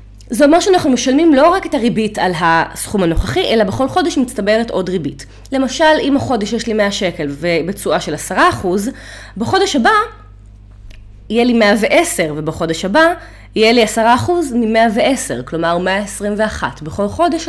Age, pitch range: 20-39, 165-250 Hz